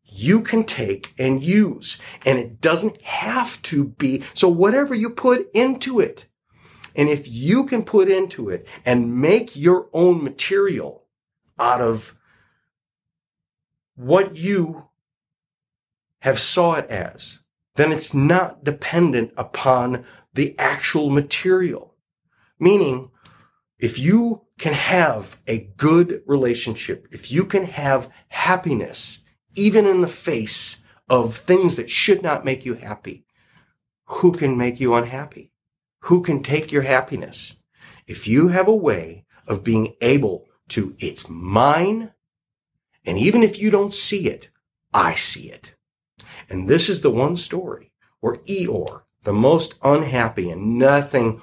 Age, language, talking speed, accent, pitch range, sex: 40-59, English, 135 wpm, American, 120-185 Hz, male